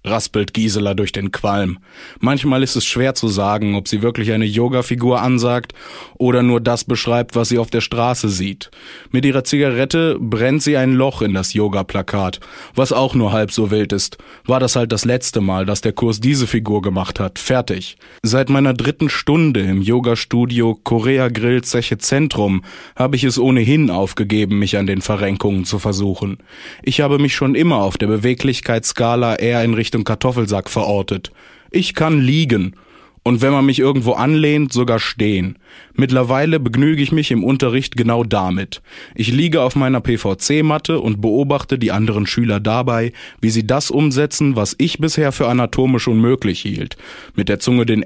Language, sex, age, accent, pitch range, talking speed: German, male, 20-39, German, 105-130 Hz, 170 wpm